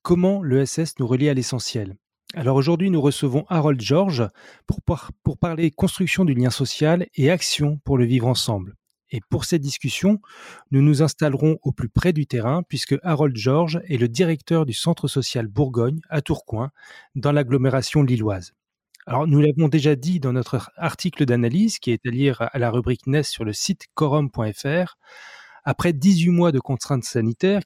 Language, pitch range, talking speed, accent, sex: French, 125-165 Hz, 175 wpm, French, male